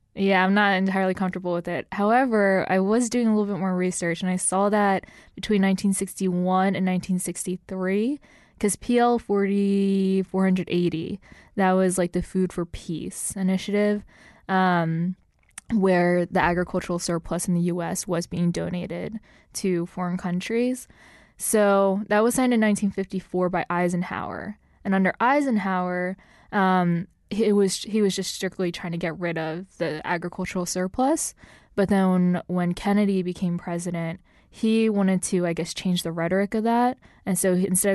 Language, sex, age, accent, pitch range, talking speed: English, female, 10-29, American, 175-195 Hz, 145 wpm